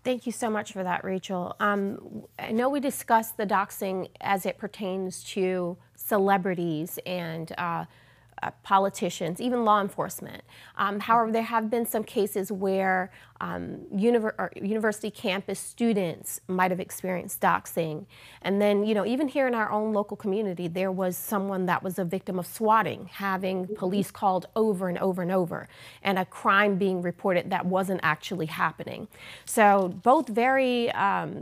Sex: female